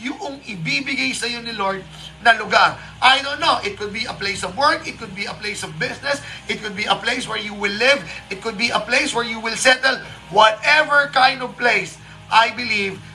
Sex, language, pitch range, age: male, Filipino, 185-250 Hz, 30-49